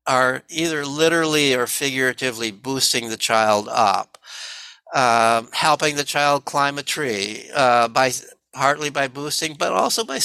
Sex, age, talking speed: male, 60-79, 140 wpm